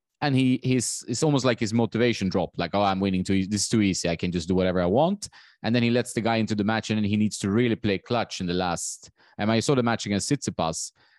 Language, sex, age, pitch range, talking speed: English, male, 20-39, 90-110 Hz, 280 wpm